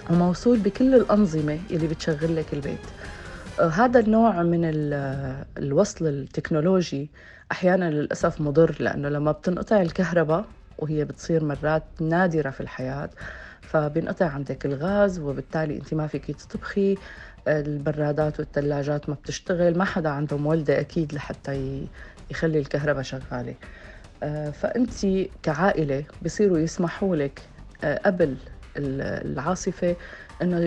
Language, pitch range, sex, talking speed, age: Arabic, 150-185 Hz, female, 110 wpm, 40-59